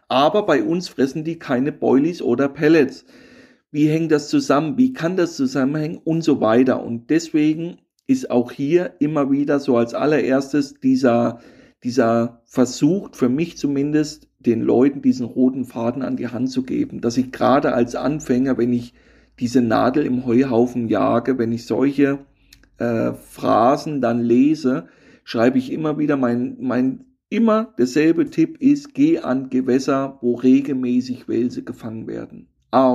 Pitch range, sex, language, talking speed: 125-160 Hz, male, German, 155 wpm